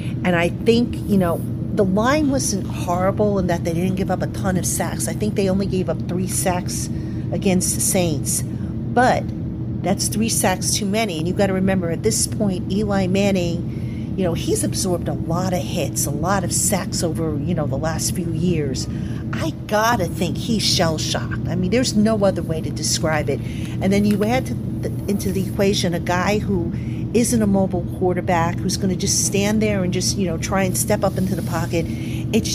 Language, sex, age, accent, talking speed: English, female, 50-69, American, 205 wpm